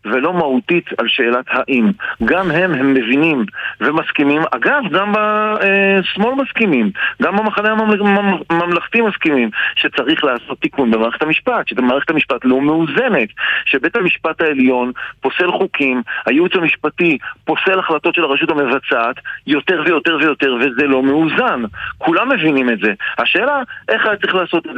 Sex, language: male, Hebrew